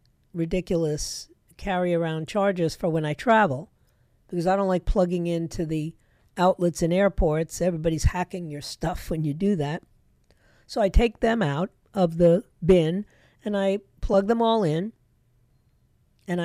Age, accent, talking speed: 50-69, American, 150 wpm